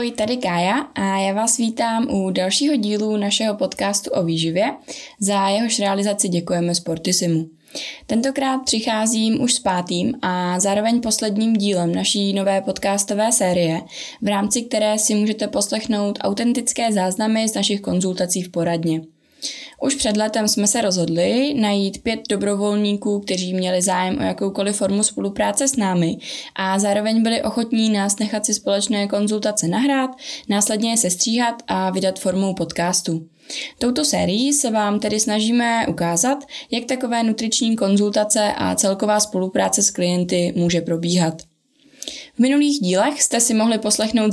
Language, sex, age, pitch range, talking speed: Czech, female, 20-39, 190-230 Hz, 140 wpm